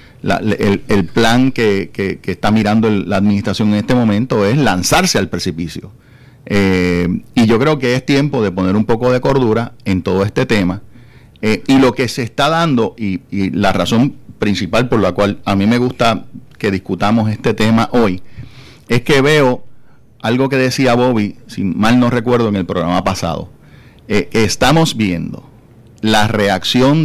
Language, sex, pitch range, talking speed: English, male, 100-135 Hz, 170 wpm